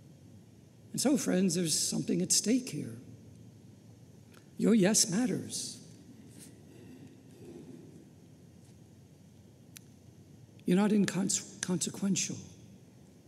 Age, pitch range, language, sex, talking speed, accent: 60-79, 160-240 Hz, English, male, 65 wpm, American